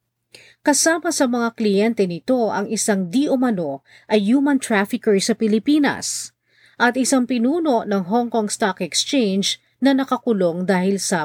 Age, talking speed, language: 40-59, 135 wpm, Filipino